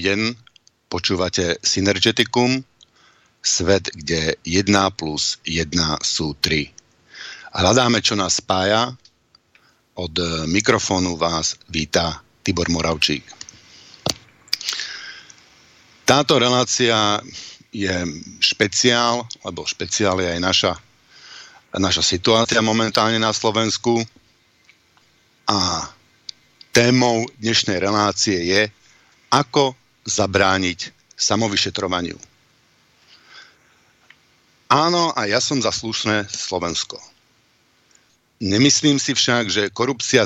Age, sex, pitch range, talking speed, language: 50-69, male, 95-120 Hz, 80 wpm, Slovak